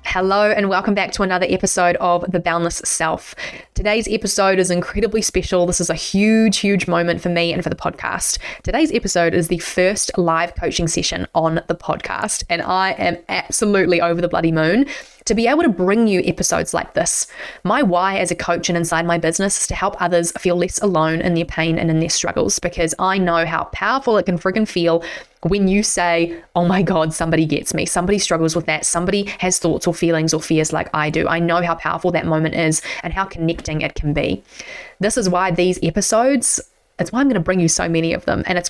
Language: English